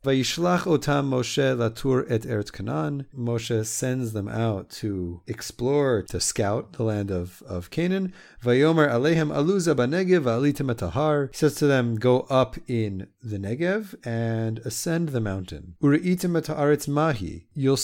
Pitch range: 110-150 Hz